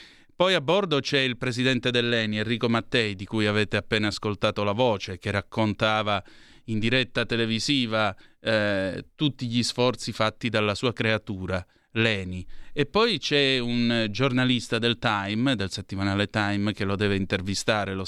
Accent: native